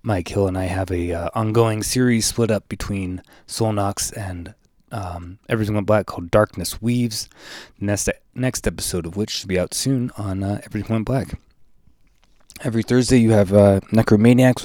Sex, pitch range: male, 90-110 Hz